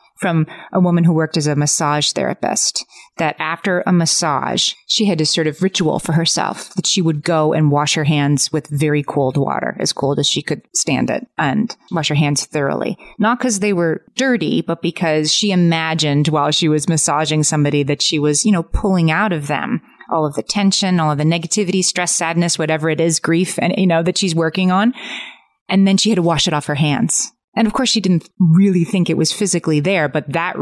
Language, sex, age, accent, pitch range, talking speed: English, female, 30-49, American, 150-185 Hz, 220 wpm